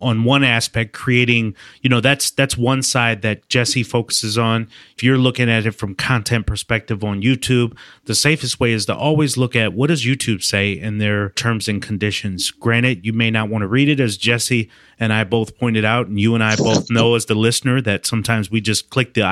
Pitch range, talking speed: 105-125 Hz, 220 wpm